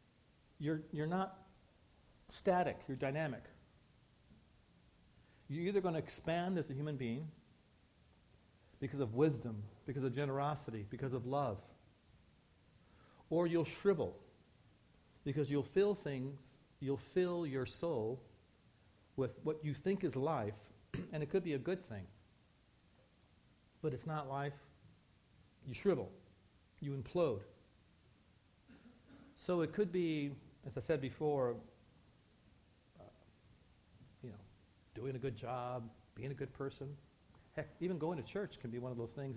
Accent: American